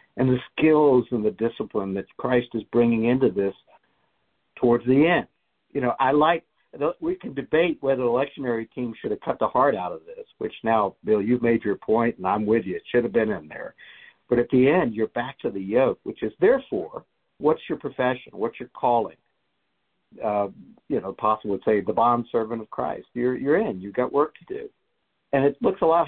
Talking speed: 210 wpm